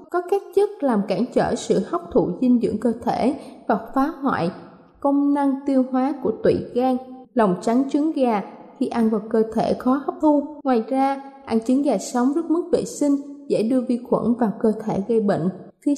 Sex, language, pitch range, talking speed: female, Vietnamese, 225-285 Hz, 205 wpm